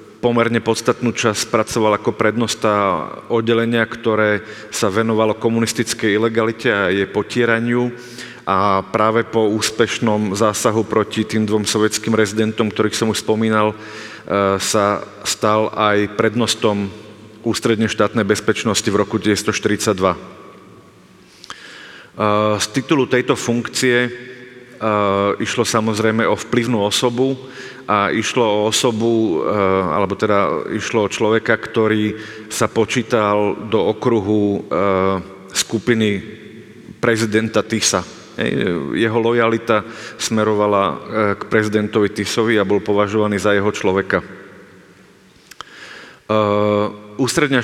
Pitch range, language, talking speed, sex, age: 105-115 Hz, Slovak, 100 wpm, male, 40-59